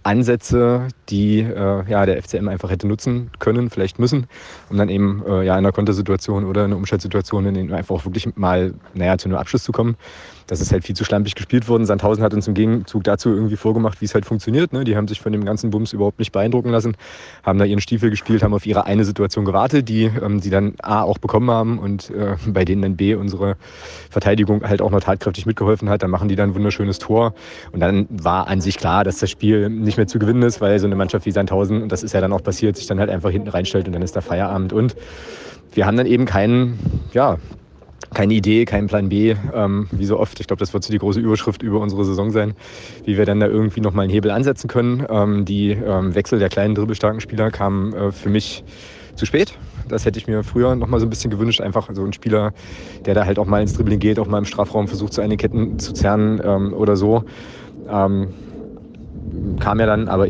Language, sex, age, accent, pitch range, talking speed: German, male, 30-49, German, 100-110 Hz, 235 wpm